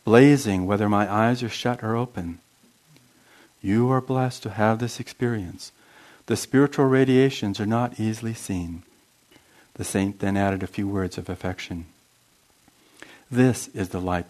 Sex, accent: male, American